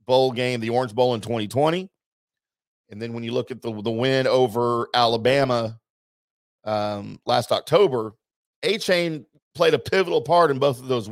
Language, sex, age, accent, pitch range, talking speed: English, male, 40-59, American, 115-140 Hz, 160 wpm